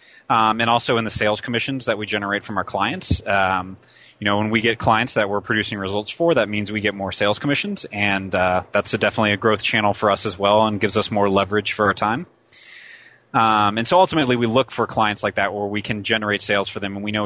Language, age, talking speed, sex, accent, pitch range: English, 30-49, 245 wpm, male, American, 100-115 Hz